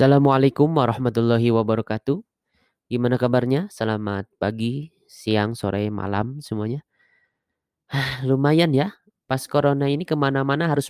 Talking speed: 100 wpm